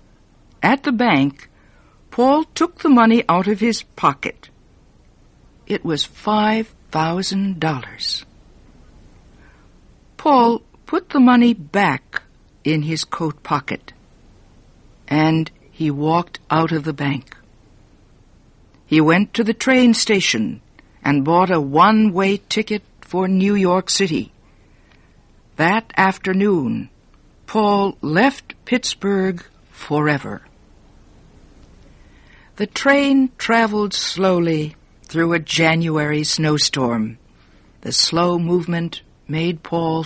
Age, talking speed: 60-79, 95 wpm